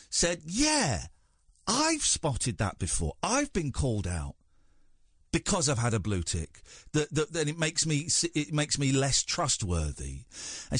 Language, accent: English, British